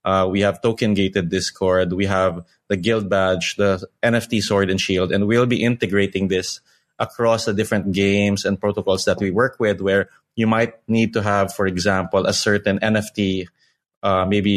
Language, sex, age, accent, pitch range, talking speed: English, male, 20-39, Filipino, 95-110 Hz, 175 wpm